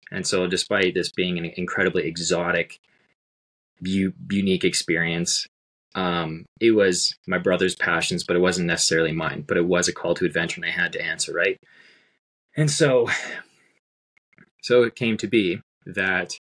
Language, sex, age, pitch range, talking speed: English, male, 20-39, 85-100 Hz, 155 wpm